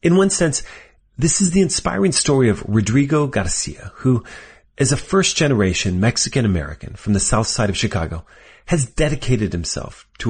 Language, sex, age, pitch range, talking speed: English, male, 30-49, 100-140 Hz, 165 wpm